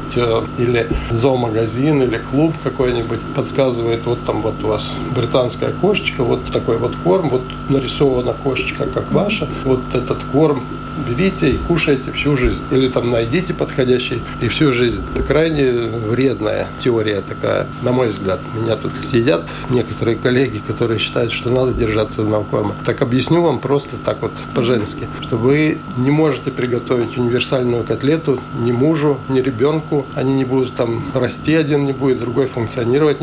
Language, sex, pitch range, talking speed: Russian, male, 120-145 Hz, 155 wpm